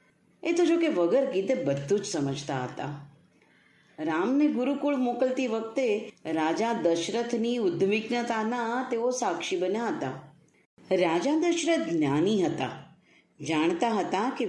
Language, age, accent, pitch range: Gujarati, 40-59, native, 170-250 Hz